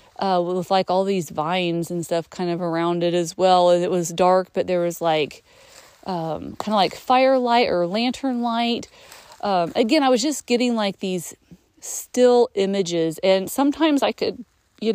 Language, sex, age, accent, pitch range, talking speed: English, female, 30-49, American, 185-235 Hz, 175 wpm